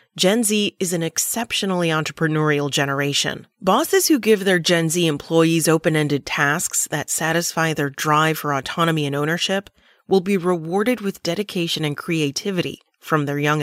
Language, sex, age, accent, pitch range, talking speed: English, female, 30-49, American, 155-195 Hz, 150 wpm